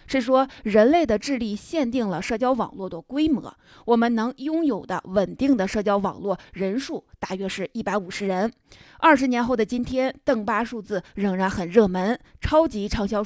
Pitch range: 195-255 Hz